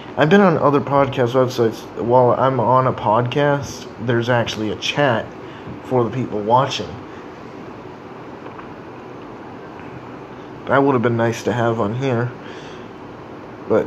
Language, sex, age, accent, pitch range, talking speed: English, male, 20-39, American, 115-145 Hz, 125 wpm